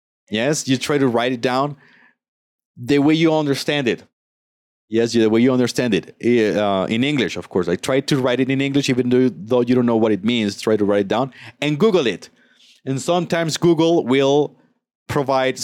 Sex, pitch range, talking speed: male, 115-160 Hz, 195 wpm